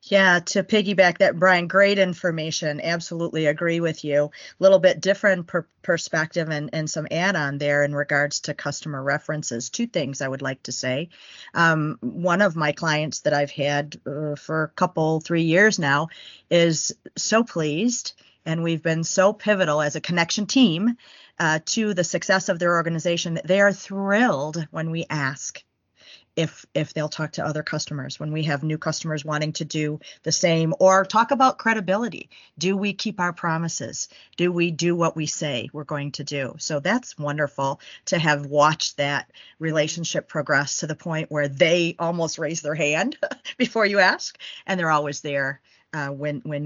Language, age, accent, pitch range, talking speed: English, 40-59, American, 145-180 Hz, 175 wpm